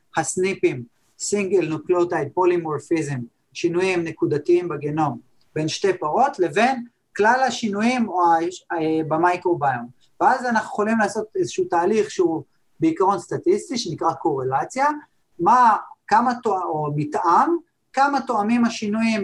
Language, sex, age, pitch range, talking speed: Hebrew, male, 30-49, 170-230 Hz, 105 wpm